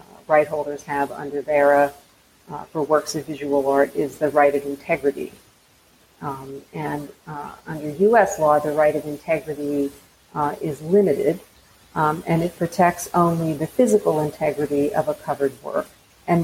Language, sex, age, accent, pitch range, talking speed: English, female, 50-69, American, 145-170 Hz, 155 wpm